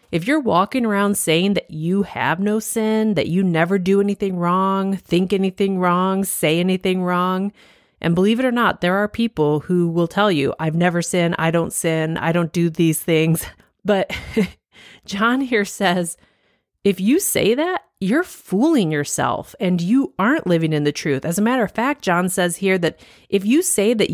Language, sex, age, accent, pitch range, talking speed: English, female, 30-49, American, 165-215 Hz, 190 wpm